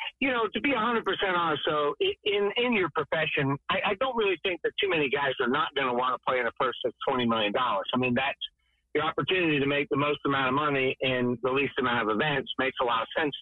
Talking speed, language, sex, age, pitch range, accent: 250 wpm, English, male, 50-69, 135-200 Hz, American